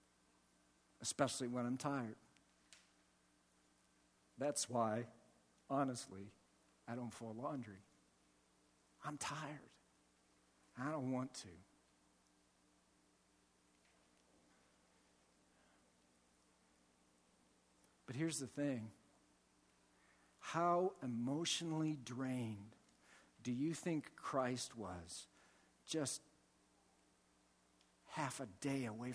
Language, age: English, 60-79